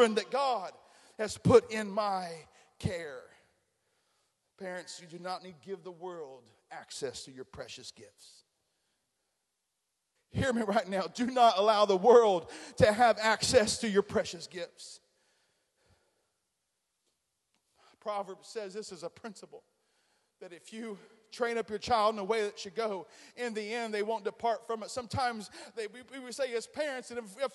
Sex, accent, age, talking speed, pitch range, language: male, American, 40-59, 160 wpm, 225-295 Hz, English